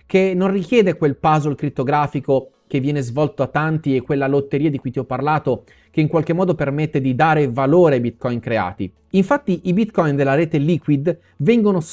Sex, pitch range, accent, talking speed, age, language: male, 135-195 Hz, native, 185 wpm, 30-49, Italian